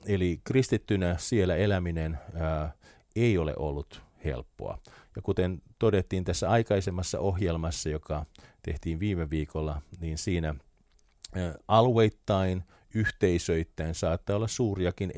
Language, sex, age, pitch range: Finnish, male, 50-69, 80-100 Hz